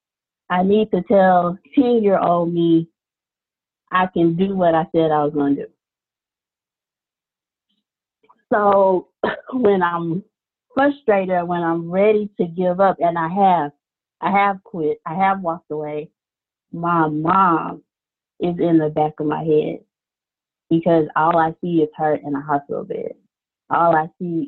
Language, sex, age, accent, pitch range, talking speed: English, female, 30-49, American, 155-190 Hz, 150 wpm